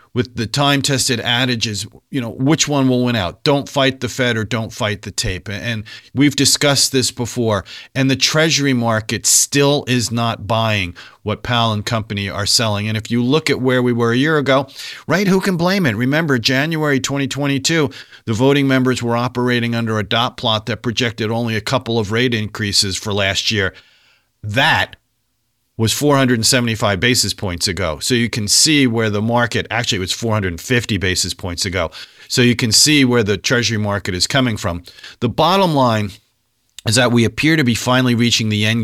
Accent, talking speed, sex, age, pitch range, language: American, 185 wpm, male, 50-69, 110-135 Hz, English